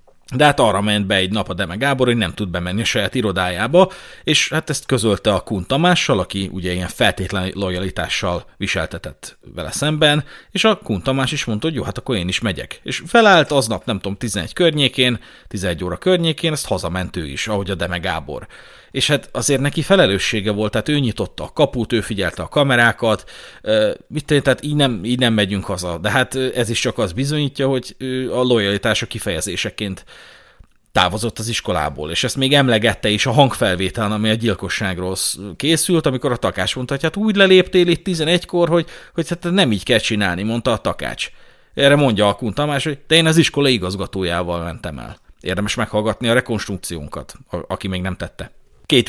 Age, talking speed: 30-49, 180 wpm